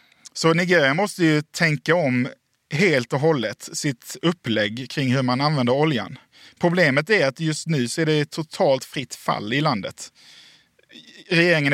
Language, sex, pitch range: Swedish, male, 130-160 Hz